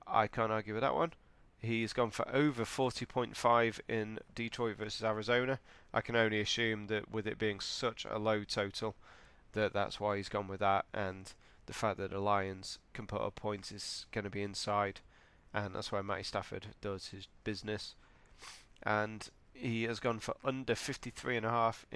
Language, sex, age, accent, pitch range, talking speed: English, male, 30-49, British, 100-115 Hz, 175 wpm